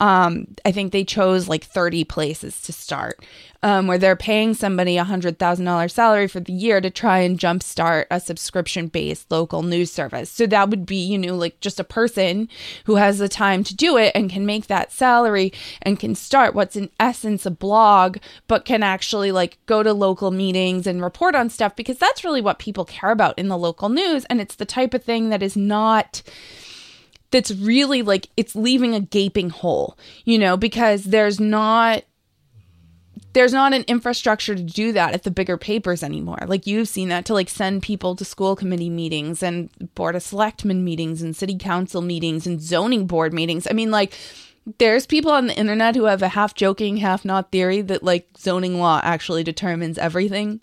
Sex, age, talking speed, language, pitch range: female, 20-39, 195 wpm, English, 180-215 Hz